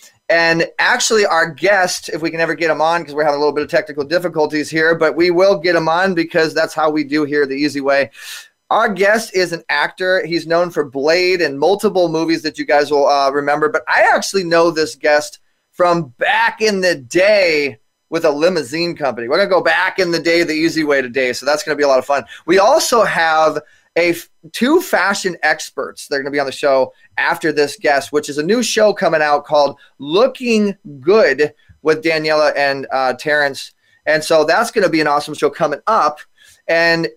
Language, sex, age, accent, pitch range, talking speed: English, male, 20-39, American, 150-185 Hz, 210 wpm